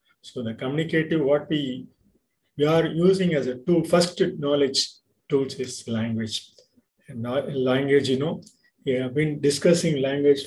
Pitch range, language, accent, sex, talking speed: 130-165 Hz, Tamil, native, male, 145 wpm